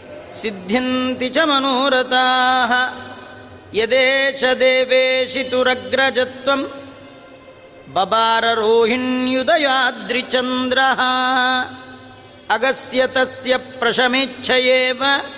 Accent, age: native, 30-49